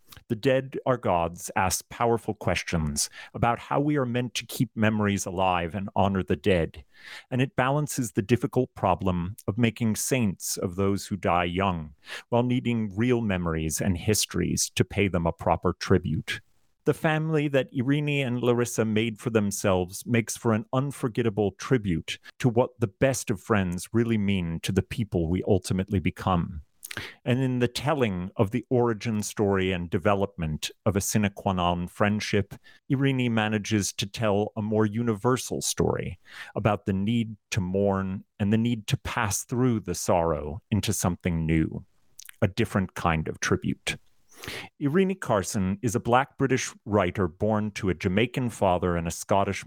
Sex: male